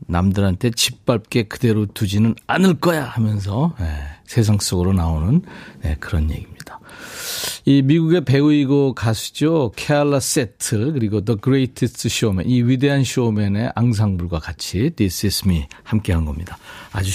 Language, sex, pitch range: Korean, male, 100-140 Hz